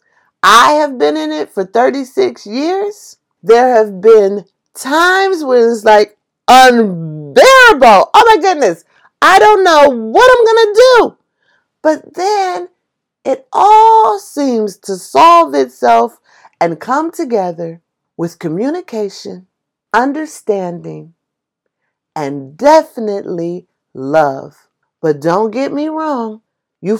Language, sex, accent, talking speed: English, female, American, 110 wpm